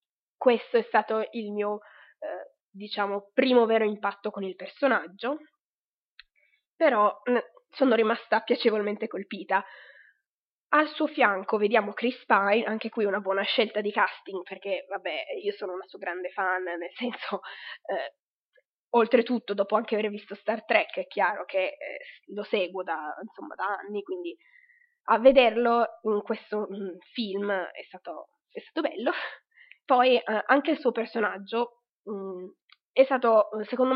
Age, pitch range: 20-39, 205-250 Hz